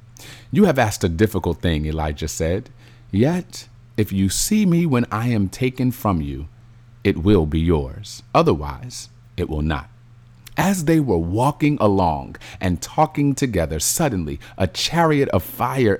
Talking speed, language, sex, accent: 150 wpm, English, male, American